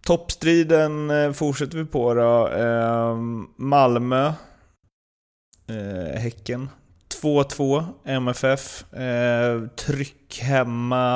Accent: native